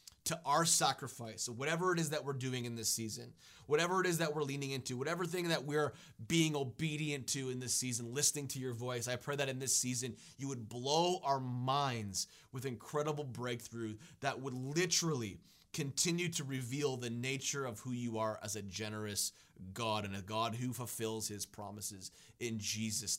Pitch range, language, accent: 115-140 Hz, English, American